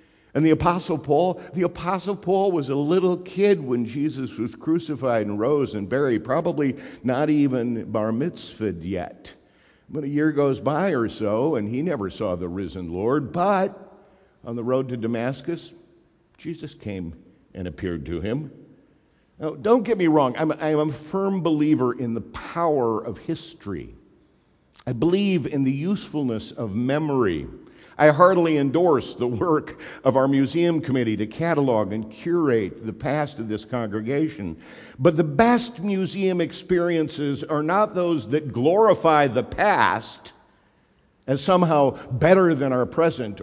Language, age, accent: English, 50-69, American